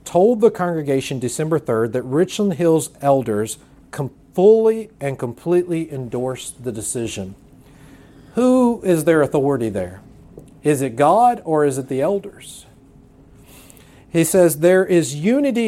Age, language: 40-59, English